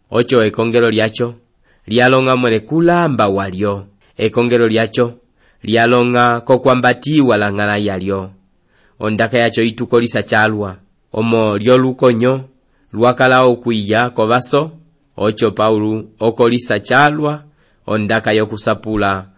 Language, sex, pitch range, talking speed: English, male, 105-125 Hz, 90 wpm